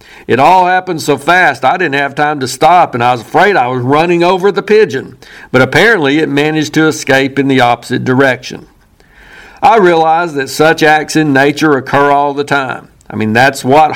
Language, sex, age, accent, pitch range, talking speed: English, male, 50-69, American, 135-165 Hz, 200 wpm